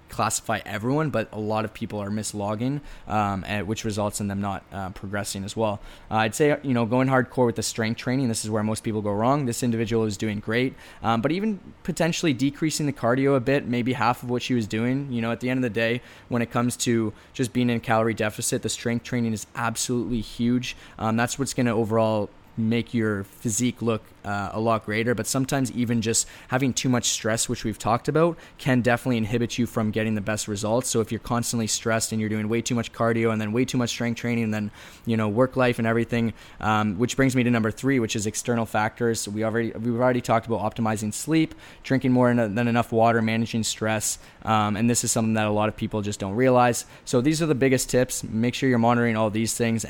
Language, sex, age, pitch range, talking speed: English, male, 20-39, 110-125 Hz, 230 wpm